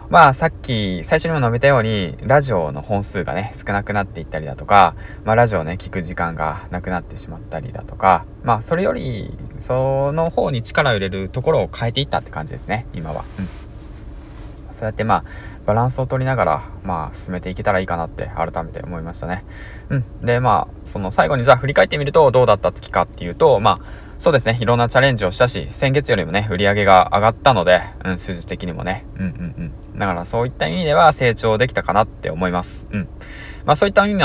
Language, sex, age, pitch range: Japanese, male, 20-39, 90-120 Hz